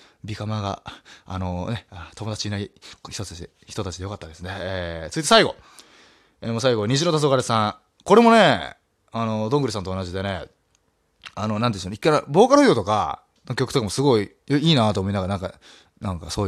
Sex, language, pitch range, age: male, Japanese, 95-130 Hz, 20-39